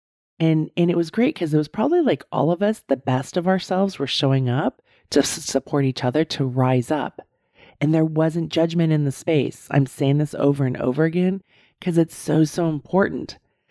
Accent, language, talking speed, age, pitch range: American, English, 200 wpm, 40-59, 130-155 Hz